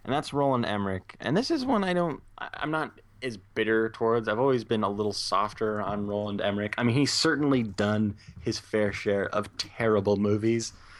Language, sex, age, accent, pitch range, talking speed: English, male, 20-39, American, 100-125 Hz, 195 wpm